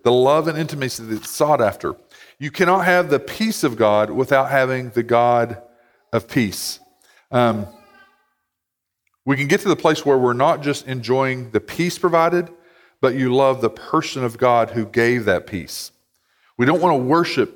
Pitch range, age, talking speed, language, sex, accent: 125-165 Hz, 40-59, 175 wpm, English, male, American